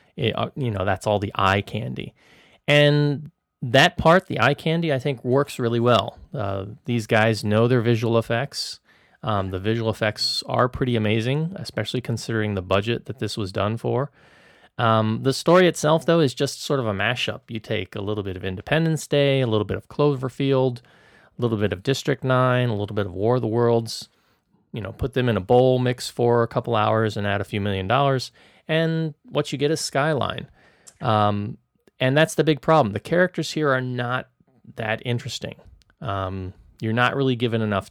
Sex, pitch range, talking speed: male, 105-135 Hz, 195 wpm